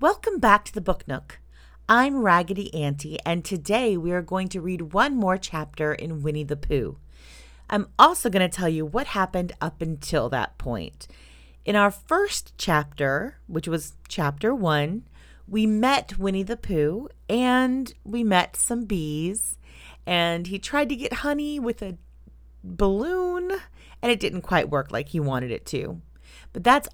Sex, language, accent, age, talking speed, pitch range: female, English, American, 40-59, 165 wpm, 140-210 Hz